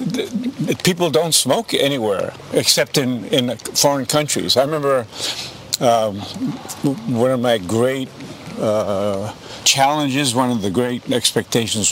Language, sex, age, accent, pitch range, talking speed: English, male, 60-79, American, 115-145 Hz, 115 wpm